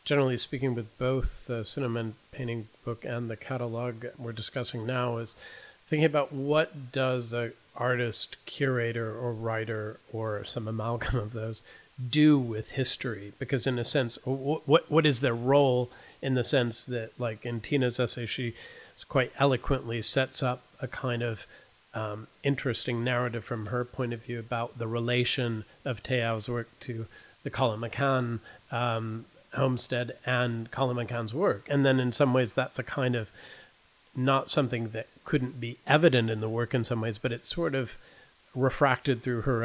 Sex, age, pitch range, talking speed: male, 40-59, 115-130 Hz, 165 wpm